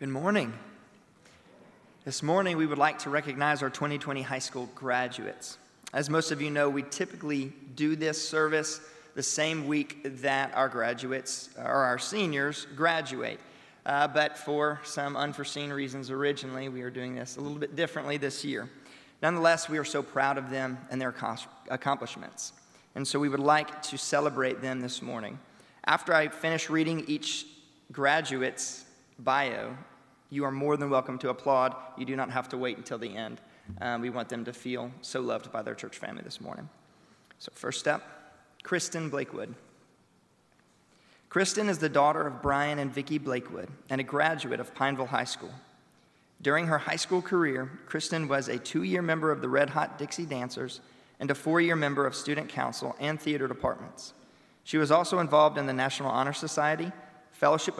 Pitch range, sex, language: 130-155 Hz, male, English